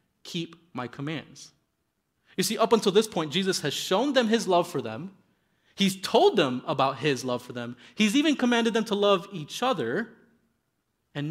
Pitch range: 145-205 Hz